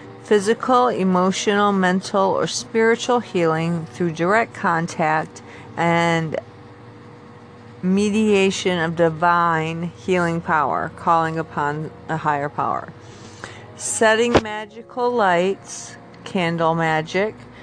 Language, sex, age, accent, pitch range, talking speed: English, female, 50-69, American, 160-200 Hz, 85 wpm